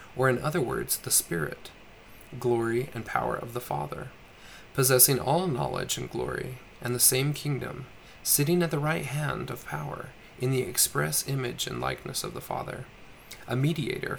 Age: 20-39